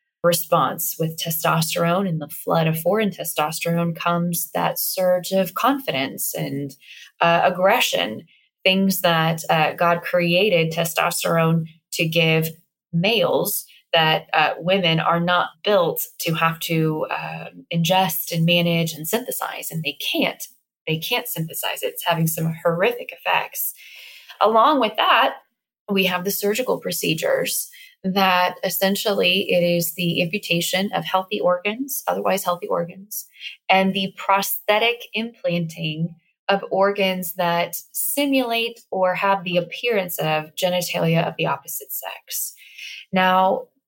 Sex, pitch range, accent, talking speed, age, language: female, 170-215 Hz, American, 125 wpm, 20-39, English